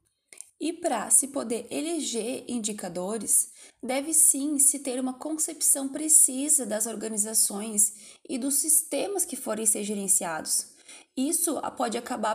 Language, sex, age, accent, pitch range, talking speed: Portuguese, female, 20-39, Brazilian, 230-305 Hz, 120 wpm